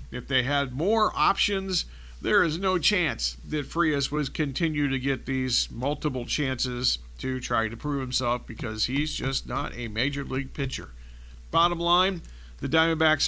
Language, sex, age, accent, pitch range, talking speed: English, male, 50-69, American, 125-155 Hz, 160 wpm